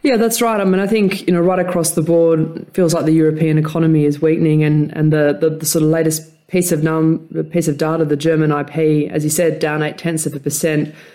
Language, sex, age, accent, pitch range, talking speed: English, female, 20-39, Australian, 150-170 Hz, 255 wpm